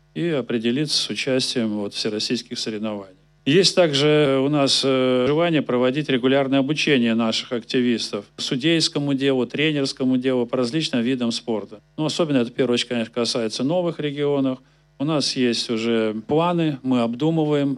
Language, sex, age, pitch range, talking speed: Russian, male, 40-59, 115-145 Hz, 140 wpm